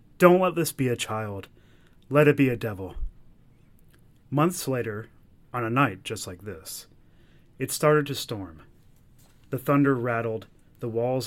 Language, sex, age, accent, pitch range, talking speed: English, male, 30-49, American, 100-135 Hz, 150 wpm